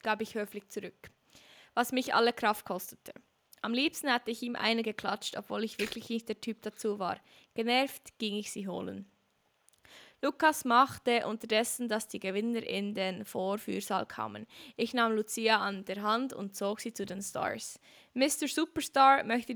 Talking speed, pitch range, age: 165 wpm, 205-240 Hz, 20-39